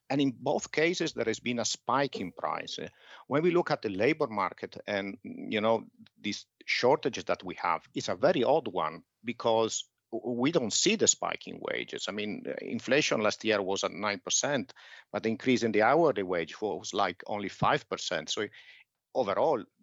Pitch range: 105-155 Hz